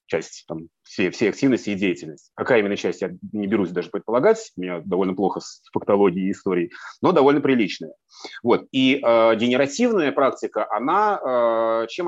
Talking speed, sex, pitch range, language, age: 165 wpm, male, 115-180 Hz, Russian, 30-49